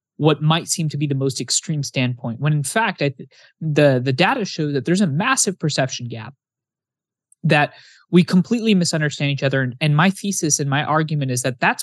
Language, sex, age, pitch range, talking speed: English, male, 20-39, 135-165 Hz, 200 wpm